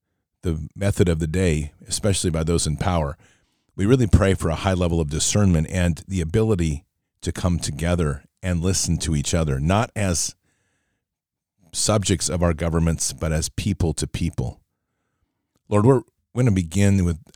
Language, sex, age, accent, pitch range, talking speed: English, male, 40-59, American, 85-100 Hz, 165 wpm